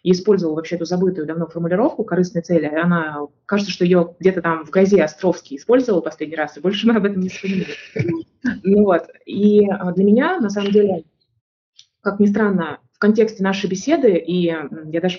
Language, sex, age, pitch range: Russian, female, 20-39, 170-210 Hz